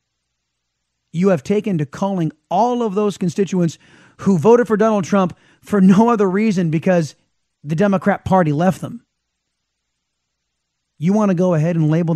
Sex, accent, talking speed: male, American, 155 wpm